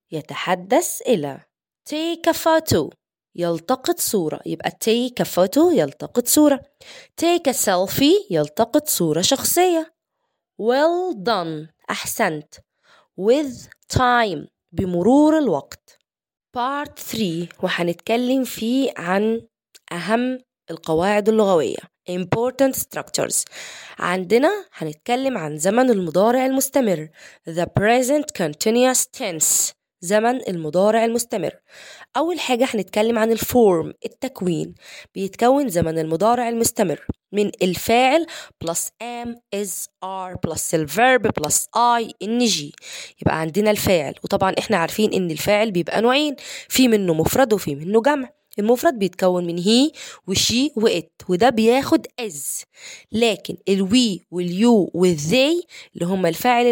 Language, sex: Arabic, female